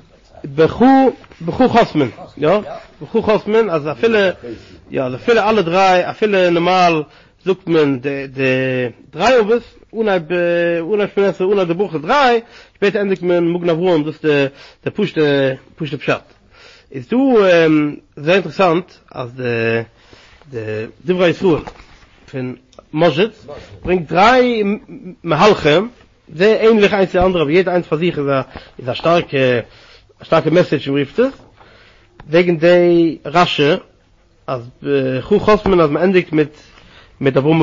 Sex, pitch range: male, 135-205 Hz